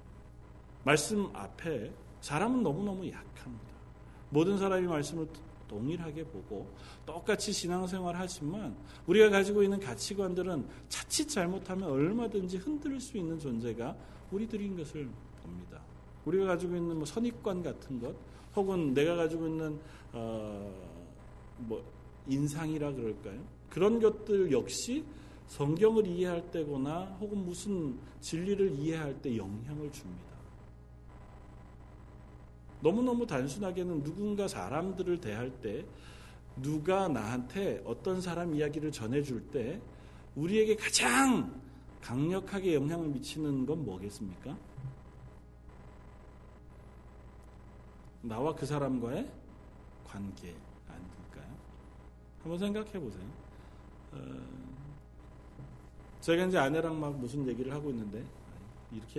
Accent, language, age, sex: native, Korean, 40-59, male